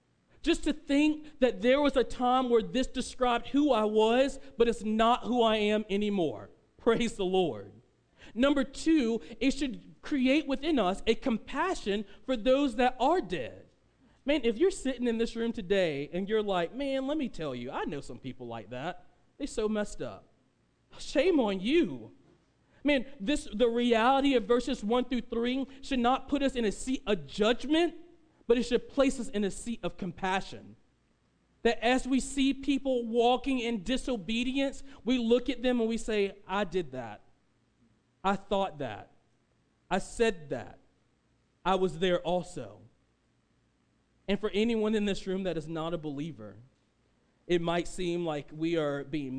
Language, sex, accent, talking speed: English, male, American, 170 wpm